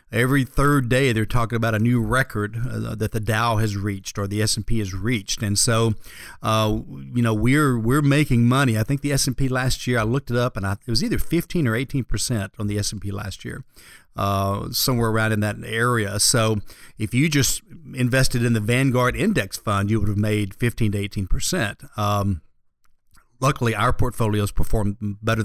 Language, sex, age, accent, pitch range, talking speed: English, male, 40-59, American, 105-130 Hz, 210 wpm